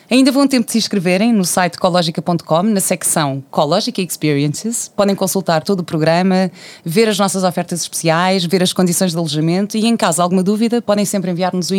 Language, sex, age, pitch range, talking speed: Portuguese, female, 20-39, 165-200 Hz, 195 wpm